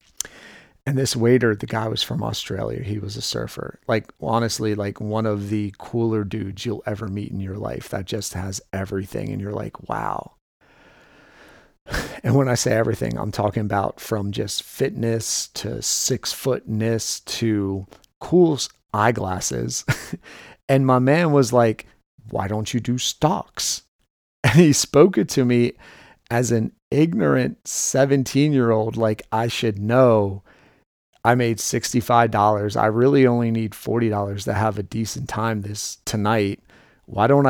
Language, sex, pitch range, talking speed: English, male, 105-130 Hz, 150 wpm